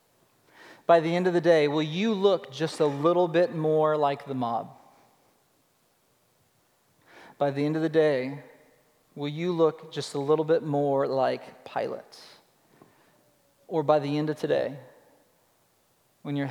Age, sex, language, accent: 40-59, male, English, American